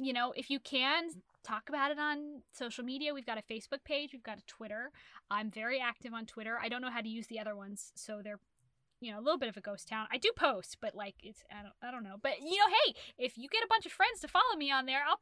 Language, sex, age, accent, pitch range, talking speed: English, female, 20-39, American, 210-270 Hz, 290 wpm